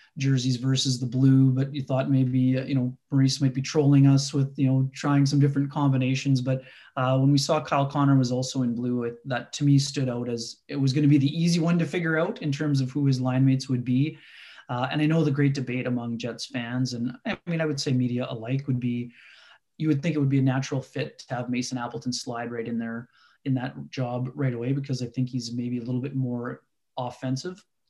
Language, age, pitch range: English, 20-39, 125-145 Hz